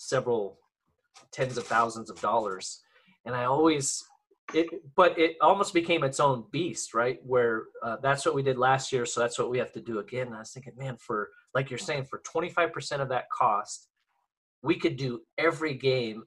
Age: 30-49